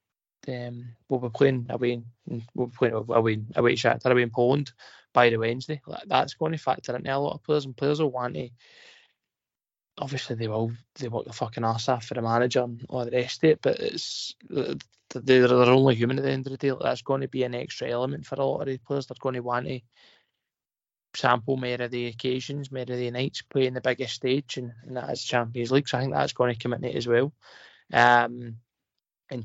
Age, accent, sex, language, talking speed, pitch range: 20-39, British, male, English, 230 wpm, 120-140 Hz